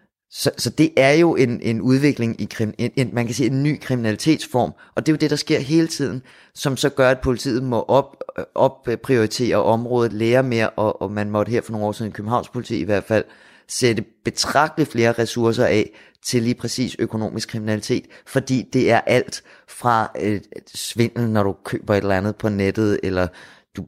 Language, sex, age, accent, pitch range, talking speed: Danish, male, 30-49, native, 105-125 Hz, 195 wpm